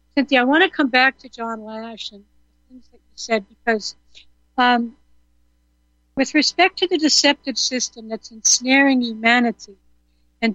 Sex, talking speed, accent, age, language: female, 140 wpm, American, 60-79, English